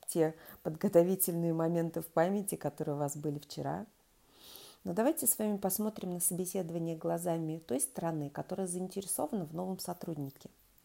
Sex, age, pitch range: female, 40-59, 165-215 Hz